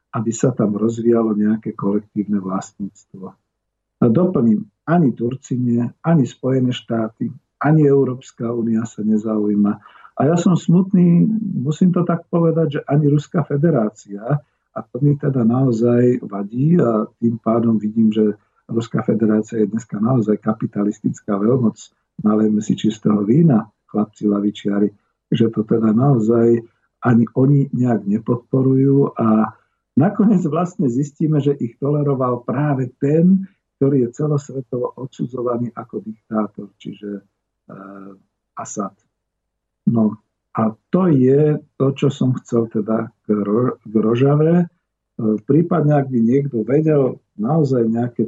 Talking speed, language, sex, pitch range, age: 120 wpm, Slovak, male, 110-145 Hz, 50-69